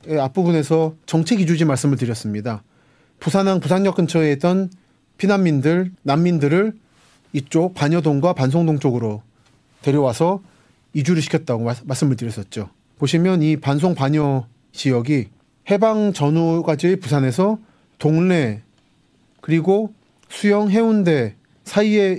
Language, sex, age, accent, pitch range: Korean, male, 30-49, native, 130-190 Hz